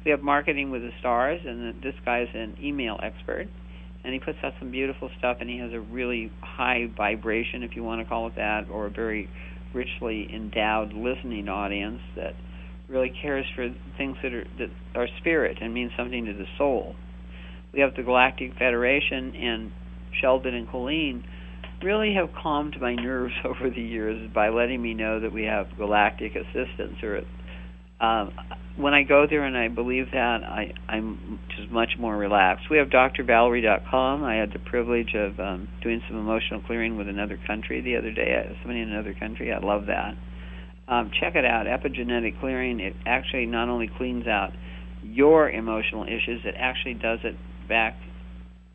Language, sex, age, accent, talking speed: English, male, 50-69, American, 175 wpm